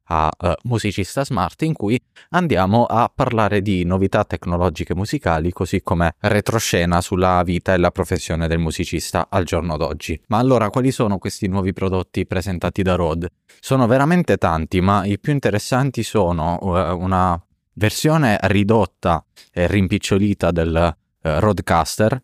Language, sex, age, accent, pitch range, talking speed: Italian, male, 20-39, native, 85-105 Hz, 145 wpm